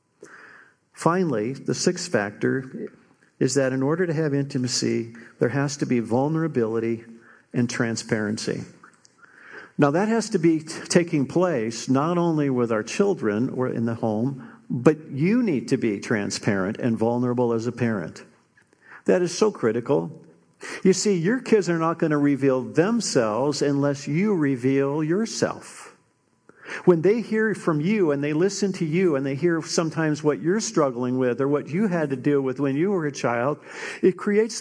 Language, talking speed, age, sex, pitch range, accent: English, 165 wpm, 50-69, male, 135-190 Hz, American